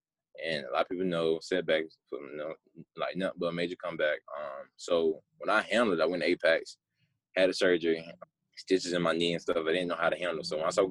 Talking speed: 250 wpm